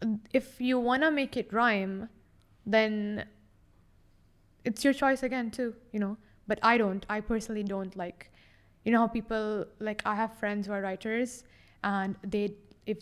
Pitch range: 185-230 Hz